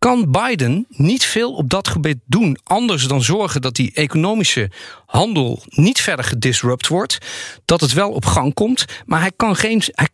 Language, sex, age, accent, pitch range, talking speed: Dutch, male, 50-69, Dutch, 145-210 Hz, 180 wpm